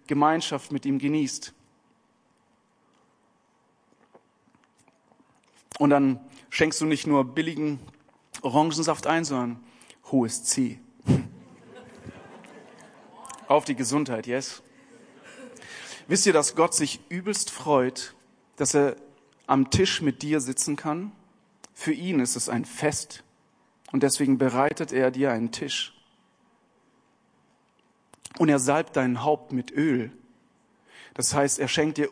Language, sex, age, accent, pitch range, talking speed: German, male, 40-59, German, 135-155 Hz, 110 wpm